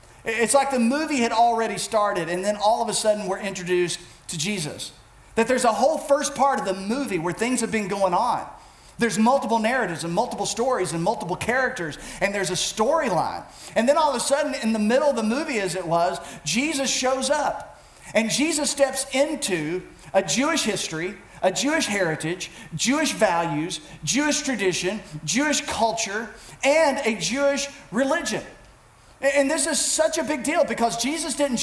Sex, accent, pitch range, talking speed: male, American, 205-270 Hz, 175 wpm